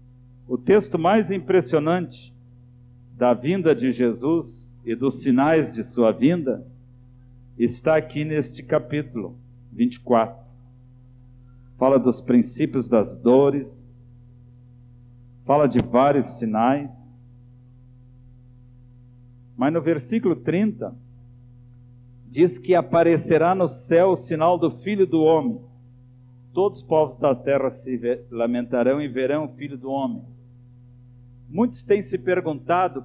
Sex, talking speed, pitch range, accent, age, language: male, 110 wpm, 125-155 Hz, Brazilian, 50-69, Portuguese